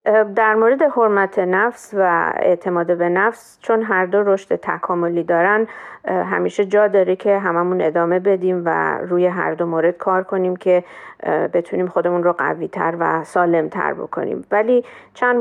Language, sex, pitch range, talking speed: Persian, female, 170-195 Hz, 155 wpm